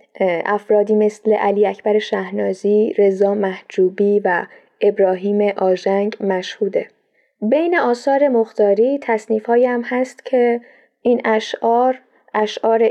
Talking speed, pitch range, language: 100 wpm, 205-245 Hz, Persian